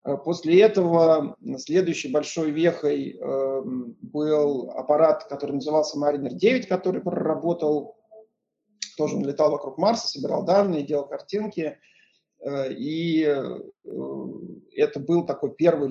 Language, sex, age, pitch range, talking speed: Russian, male, 40-59, 145-180 Hz, 100 wpm